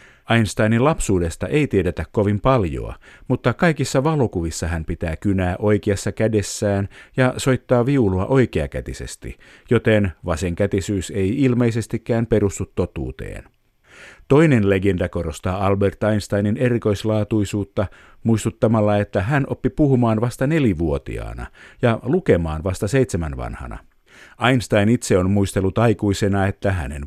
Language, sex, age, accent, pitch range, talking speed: Finnish, male, 50-69, native, 95-120 Hz, 110 wpm